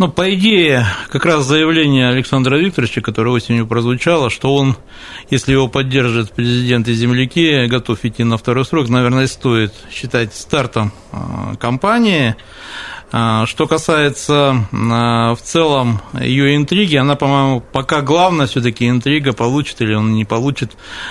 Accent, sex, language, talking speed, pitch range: native, male, Russian, 135 wpm, 115-140 Hz